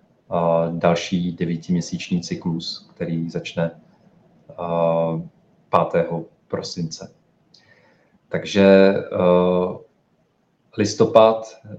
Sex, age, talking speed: male, 40-59, 50 wpm